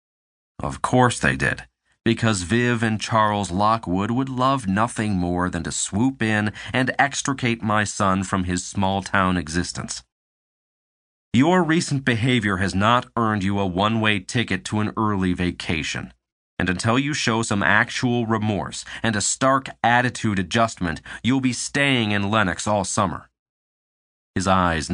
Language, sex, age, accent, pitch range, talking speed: English, male, 40-59, American, 90-115 Hz, 145 wpm